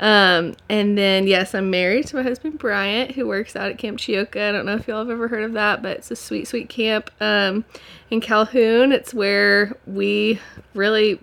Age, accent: 20-39, American